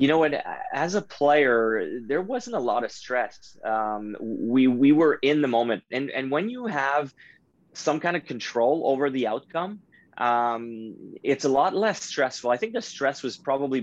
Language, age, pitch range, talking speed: English, 20-39, 110-135 Hz, 185 wpm